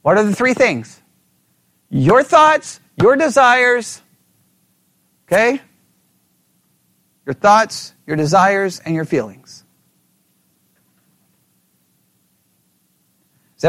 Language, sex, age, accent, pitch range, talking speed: English, male, 40-59, American, 175-275 Hz, 80 wpm